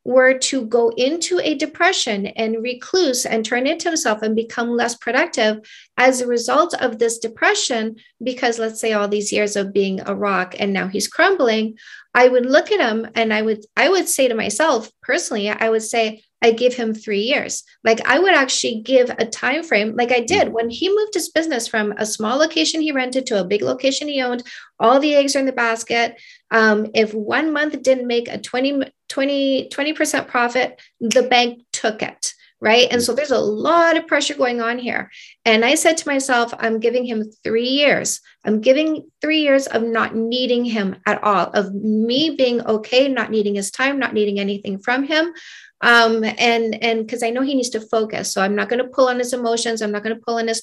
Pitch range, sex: 220-270 Hz, female